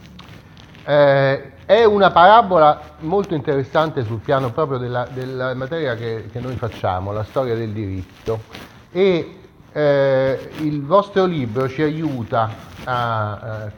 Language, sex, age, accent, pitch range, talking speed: Italian, male, 30-49, native, 115-150 Hz, 125 wpm